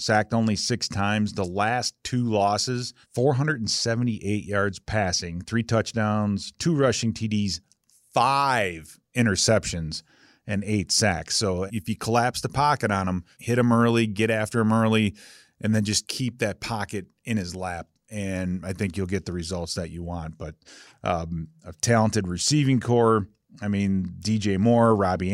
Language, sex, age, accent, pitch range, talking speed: English, male, 30-49, American, 95-115 Hz, 155 wpm